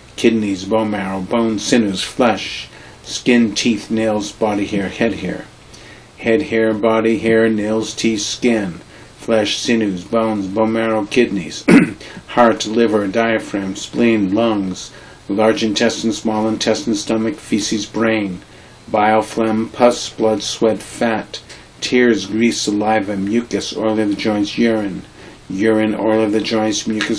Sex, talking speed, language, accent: male, 130 wpm, English, American